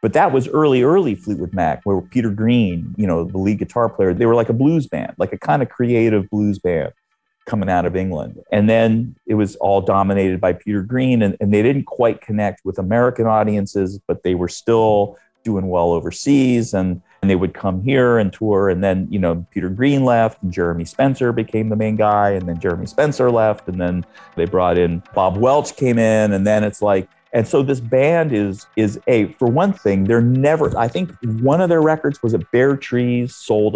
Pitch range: 90-115 Hz